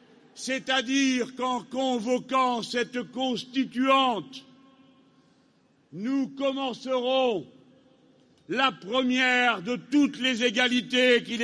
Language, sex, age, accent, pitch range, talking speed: French, male, 60-79, French, 245-270 Hz, 75 wpm